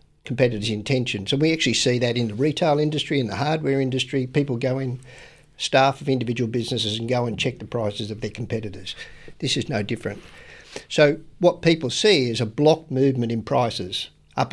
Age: 50-69